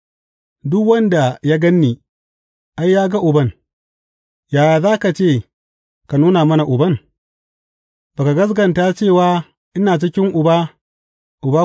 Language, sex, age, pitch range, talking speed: English, male, 40-59, 120-175 Hz, 105 wpm